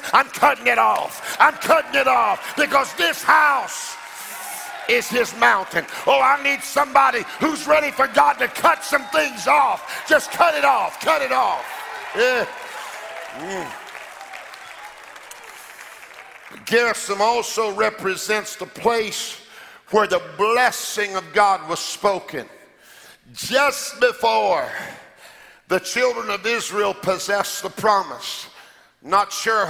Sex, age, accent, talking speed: male, 50-69, American, 115 wpm